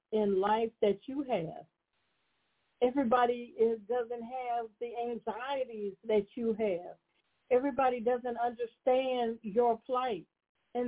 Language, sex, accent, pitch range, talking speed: English, female, American, 220-260 Hz, 110 wpm